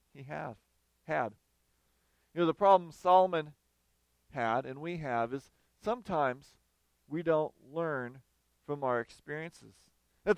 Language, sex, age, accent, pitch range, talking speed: English, male, 40-59, American, 130-210 Hz, 120 wpm